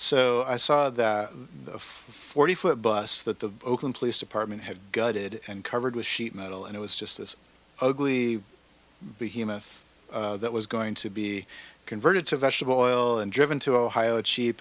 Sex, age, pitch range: male, 40-59, 105-125 Hz